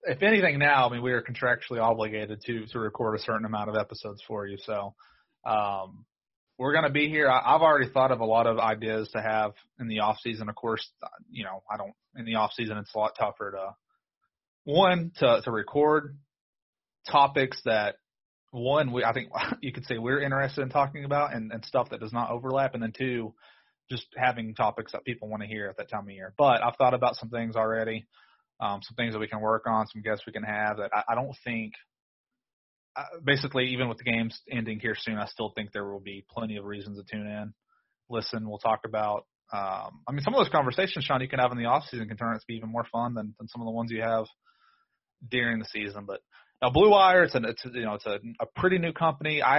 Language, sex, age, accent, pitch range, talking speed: English, male, 30-49, American, 110-130 Hz, 240 wpm